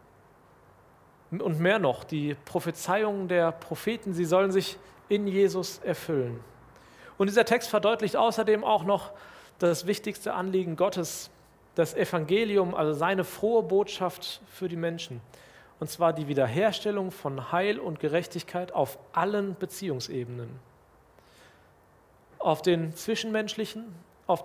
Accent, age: German, 40-59